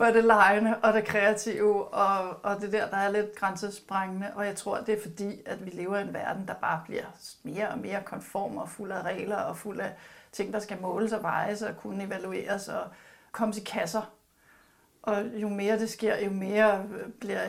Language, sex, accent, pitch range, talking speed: Danish, female, native, 205-240 Hz, 215 wpm